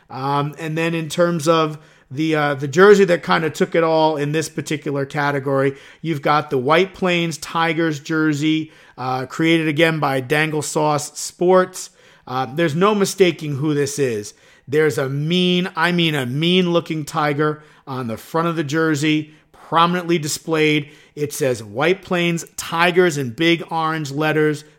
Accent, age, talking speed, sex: American, 50-69, 160 wpm, male